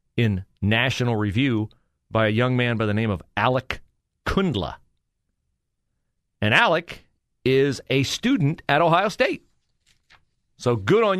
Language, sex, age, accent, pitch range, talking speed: English, male, 40-59, American, 100-140 Hz, 130 wpm